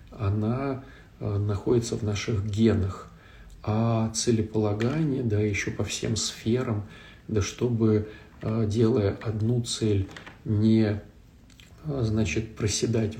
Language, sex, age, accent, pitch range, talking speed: Russian, male, 40-59, native, 105-120 Hz, 90 wpm